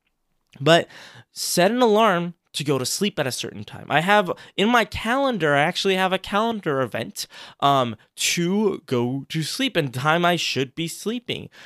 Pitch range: 130-185 Hz